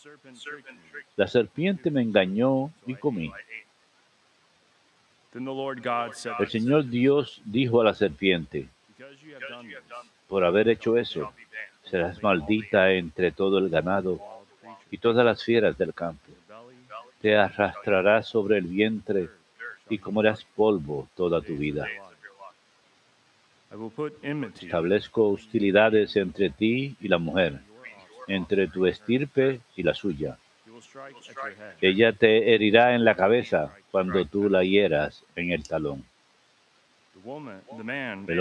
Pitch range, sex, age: 95-130 Hz, male, 60-79